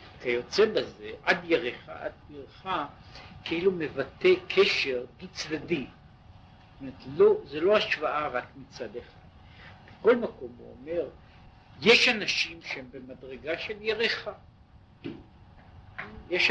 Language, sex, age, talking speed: Hebrew, male, 60-79, 110 wpm